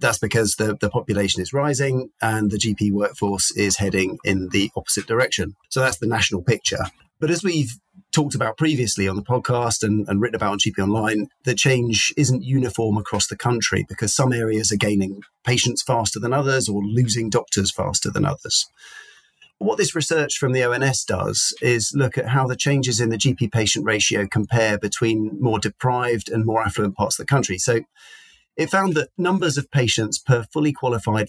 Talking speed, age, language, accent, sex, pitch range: 190 wpm, 40-59, English, British, male, 105-135 Hz